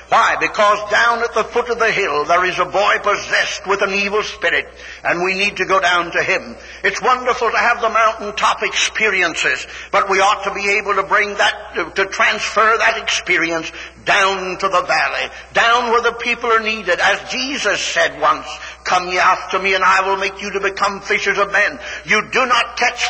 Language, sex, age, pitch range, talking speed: English, male, 60-79, 195-230 Hz, 205 wpm